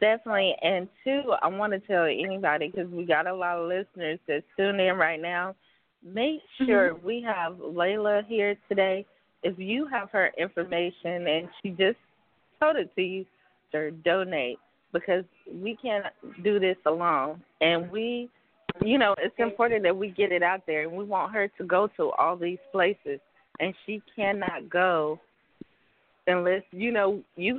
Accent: American